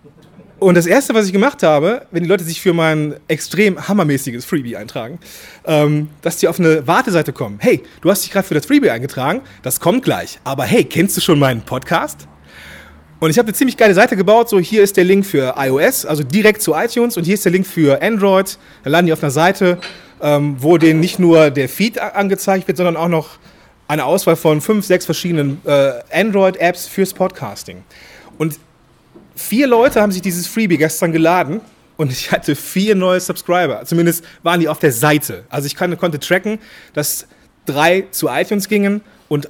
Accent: German